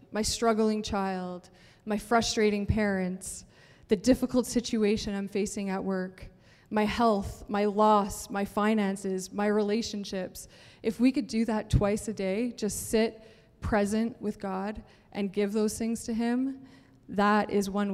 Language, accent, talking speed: English, American, 145 wpm